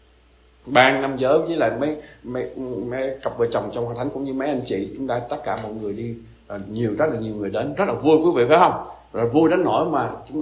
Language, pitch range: Vietnamese, 110-145 Hz